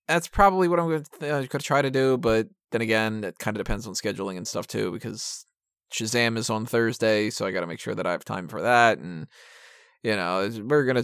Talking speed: 255 wpm